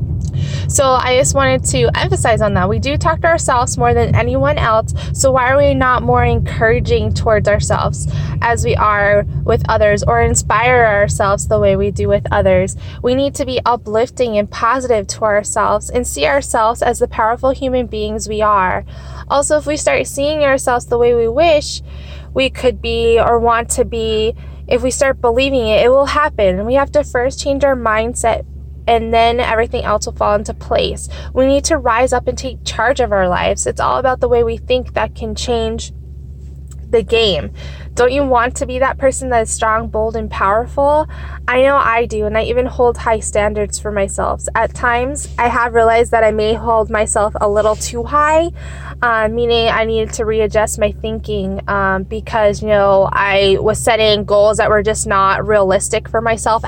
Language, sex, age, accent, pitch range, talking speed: English, female, 10-29, American, 215-255 Hz, 195 wpm